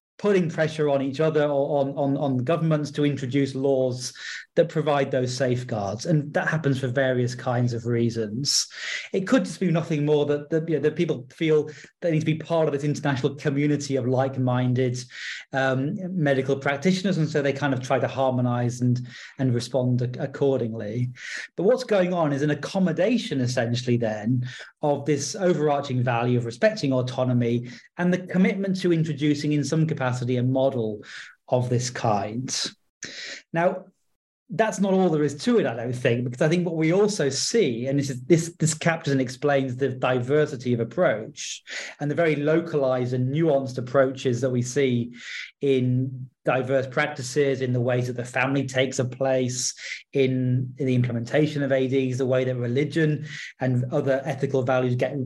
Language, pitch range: English, 125-155 Hz